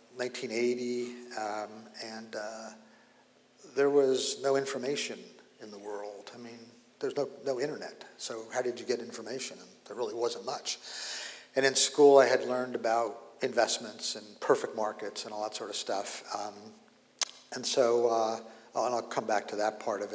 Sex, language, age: male, English, 50-69